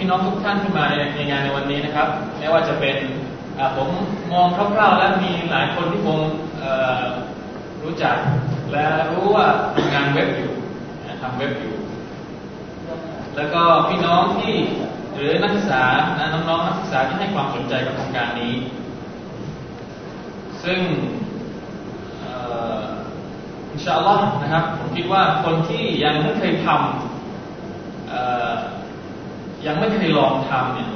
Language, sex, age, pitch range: Thai, male, 20-39, 135-180 Hz